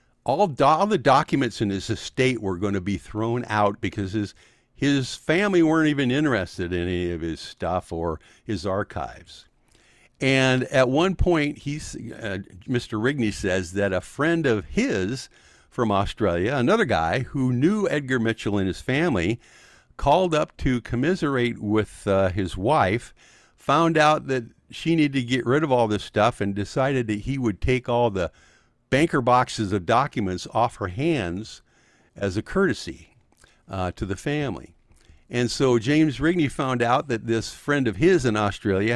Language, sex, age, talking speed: English, male, 50-69, 170 wpm